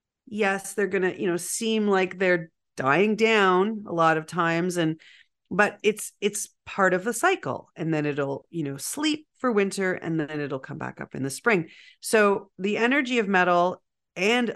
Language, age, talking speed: English, 40-59, 190 wpm